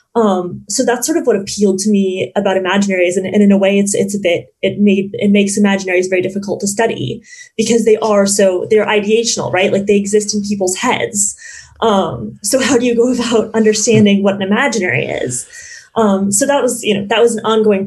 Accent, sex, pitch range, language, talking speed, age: American, female, 190-225 Hz, English, 215 wpm, 20-39